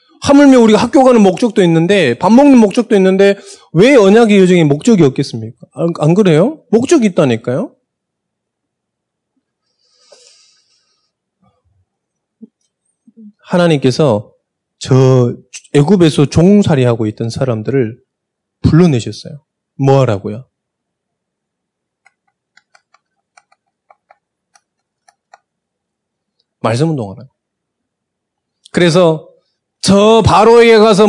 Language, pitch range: Korean, 160-245 Hz